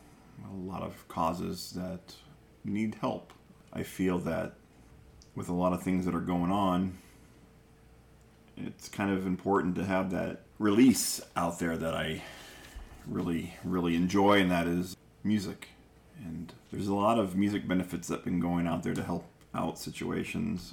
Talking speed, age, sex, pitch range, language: 155 wpm, 30-49, male, 85-95 Hz, English